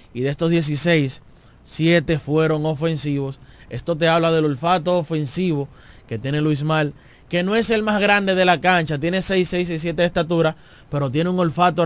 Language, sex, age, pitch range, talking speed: Spanish, male, 20-39, 140-175 Hz, 185 wpm